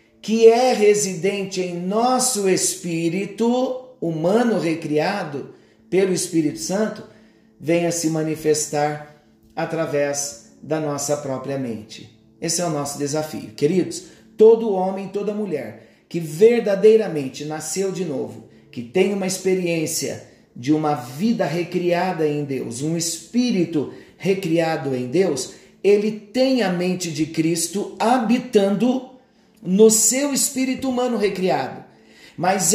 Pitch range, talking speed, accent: 160-220 Hz, 115 wpm, Brazilian